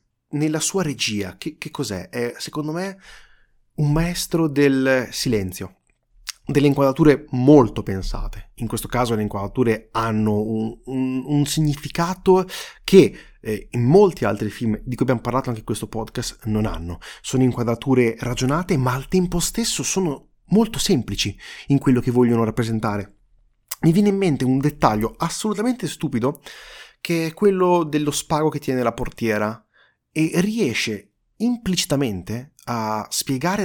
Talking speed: 145 wpm